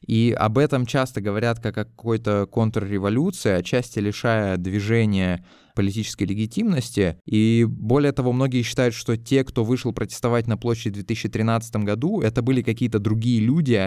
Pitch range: 105-120 Hz